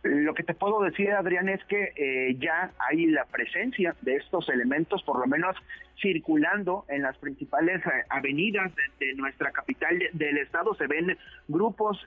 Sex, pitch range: male, 145-195 Hz